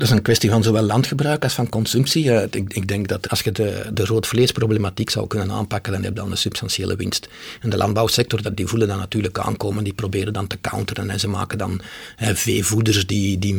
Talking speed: 210 wpm